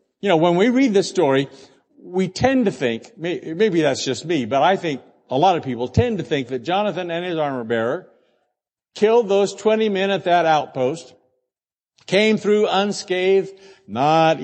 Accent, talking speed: American, 170 wpm